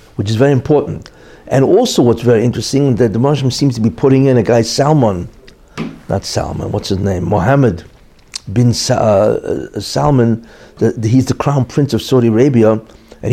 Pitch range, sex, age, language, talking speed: 120-185 Hz, male, 60-79, English, 175 wpm